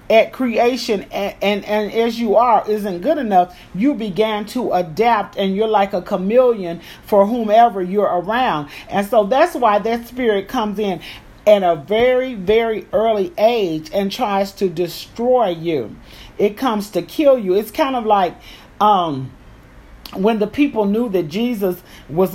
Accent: American